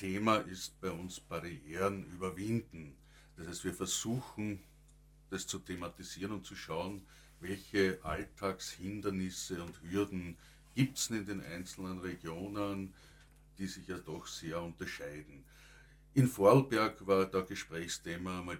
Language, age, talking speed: German, 60-79, 125 wpm